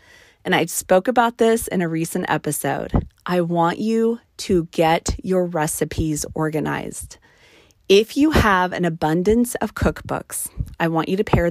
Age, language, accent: 30-49, English, American